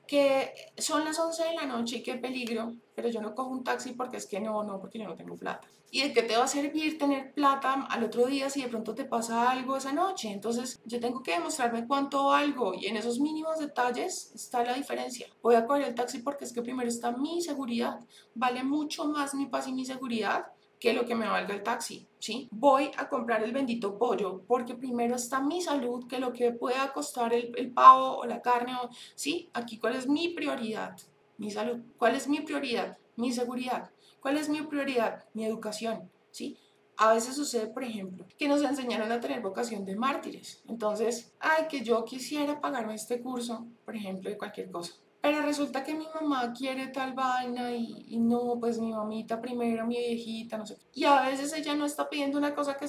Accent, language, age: Colombian, Spanish, 30-49